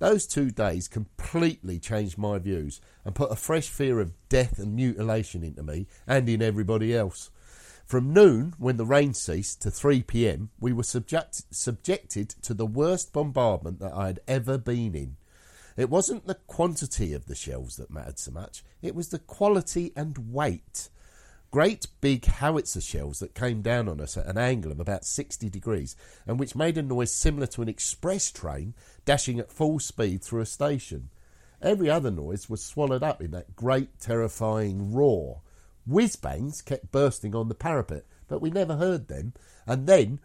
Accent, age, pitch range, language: British, 50-69, 95-145 Hz, English